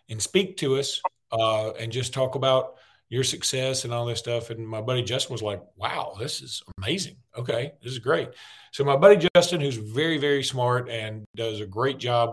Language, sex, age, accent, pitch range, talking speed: English, male, 40-59, American, 115-140 Hz, 205 wpm